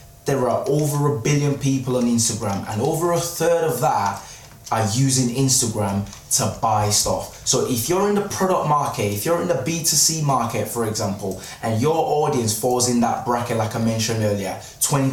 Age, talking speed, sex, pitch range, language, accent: 20-39, 185 wpm, male, 110-150 Hz, English, British